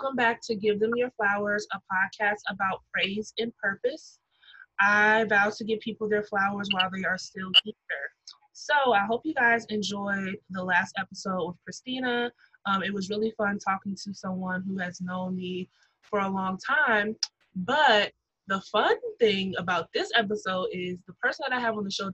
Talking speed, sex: 180 wpm, female